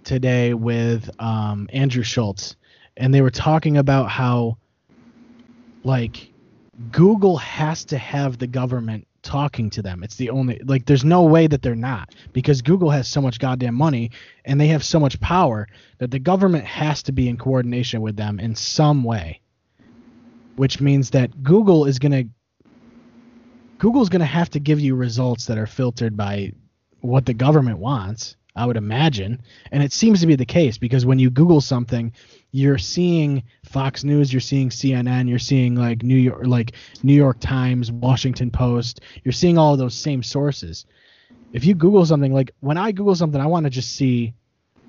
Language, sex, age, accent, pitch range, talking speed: English, male, 20-39, American, 120-150 Hz, 175 wpm